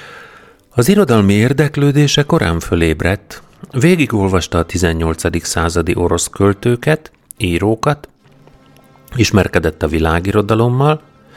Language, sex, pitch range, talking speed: Hungarian, male, 85-110 Hz, 80 wpm